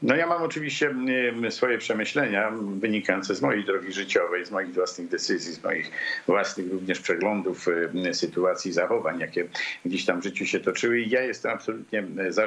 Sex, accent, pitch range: male, Polish, 95-160 Hz